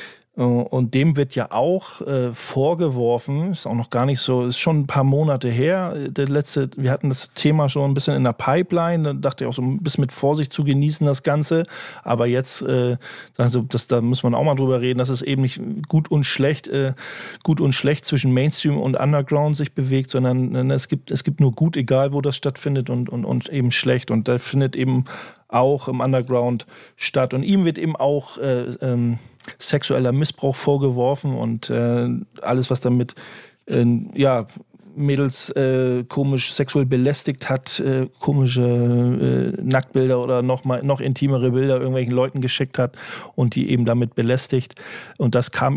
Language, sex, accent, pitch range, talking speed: German, male, German, 125-145 Hz, 185 wpm